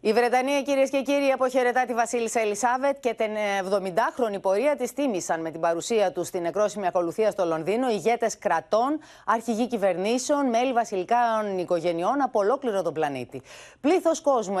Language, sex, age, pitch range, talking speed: Greek, female, 30-49, 180-245 Hz, 150 wpm